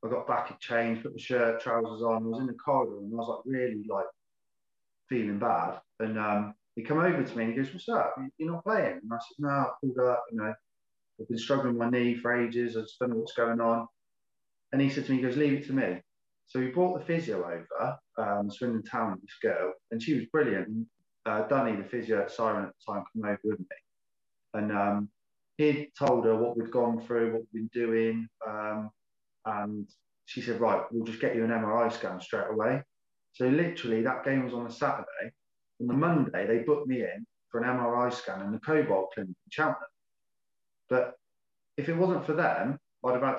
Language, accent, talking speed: English, British, 230 wpm